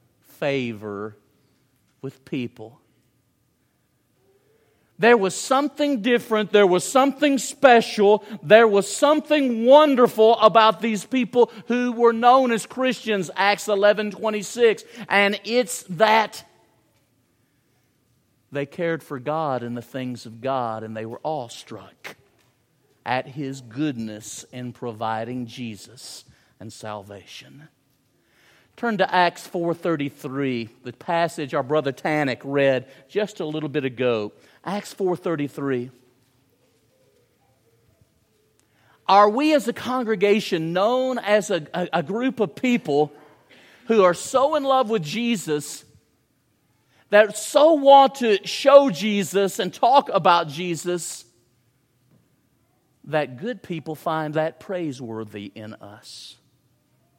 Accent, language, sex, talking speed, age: American, English, male, 110 wpm, 50-69